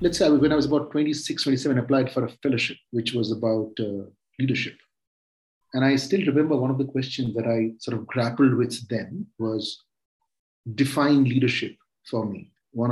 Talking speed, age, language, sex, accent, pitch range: 180 wpm, 40-59, English, male, Indian, 115-160 Hz